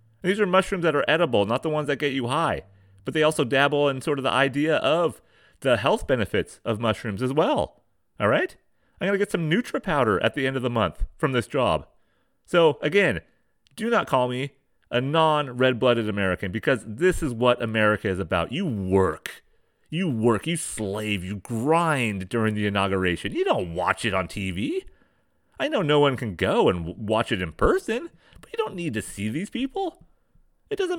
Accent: American